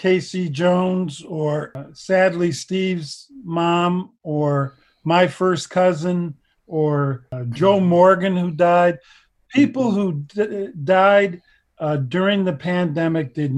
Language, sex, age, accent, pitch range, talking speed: English, male, 50-69, American, 150-185 Hz, 105 wpm